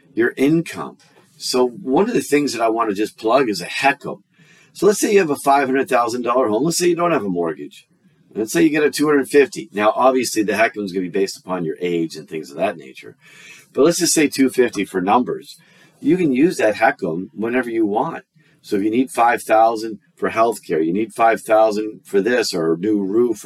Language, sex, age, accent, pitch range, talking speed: English, male, 40-59, American, 105-145 Hz, 235 wpm